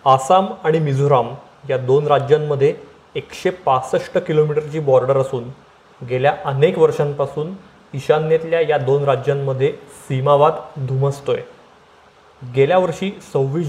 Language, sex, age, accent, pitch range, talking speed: Marathi, male, 30-49, native, 140-170 Hz, 100 wpm